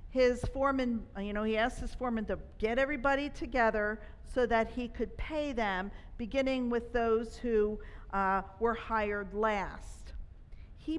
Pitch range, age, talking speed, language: 225-295 Hz, 50-69, 145 wpm, English